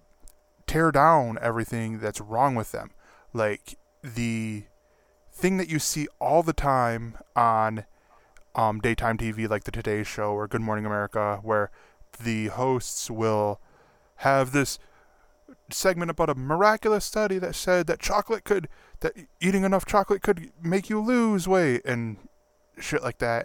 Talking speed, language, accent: 145 wpm, English, American